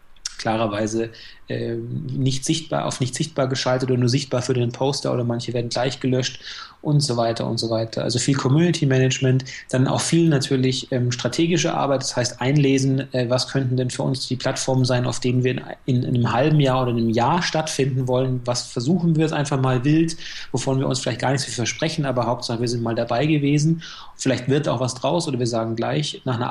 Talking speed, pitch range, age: 215 wpm, 120-140 Hz, 30-49